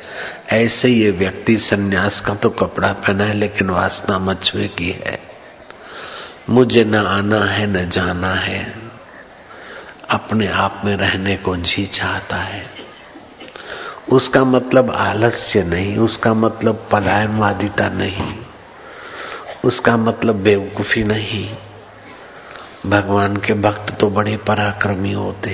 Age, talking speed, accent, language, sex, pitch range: 50-69, 115 wpm, native, Hindi, male, 100-115 Hz